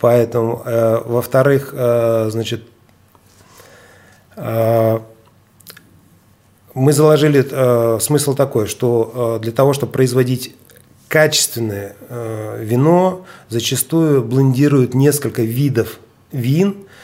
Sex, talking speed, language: male, 90 wpm, Russian